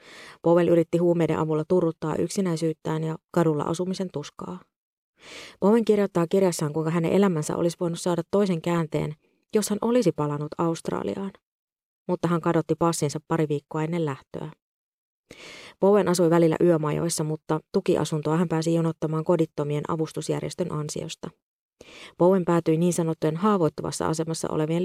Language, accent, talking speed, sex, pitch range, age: Finnish, native, 130 wpm, female, 155-180 Hz, 30-49